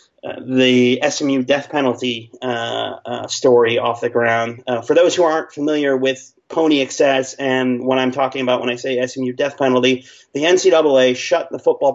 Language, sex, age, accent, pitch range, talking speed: English, male, 30-49, American, 120-150 Hz, 175 wpm